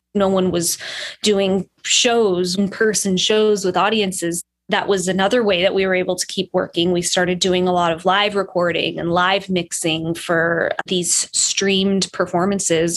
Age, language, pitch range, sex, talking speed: 20-39, English, 180-215 Hz, female, 160 wpm